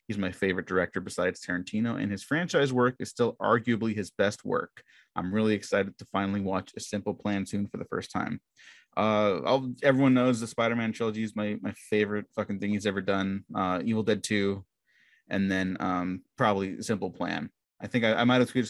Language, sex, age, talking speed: English, male, 20-39, 195 wpm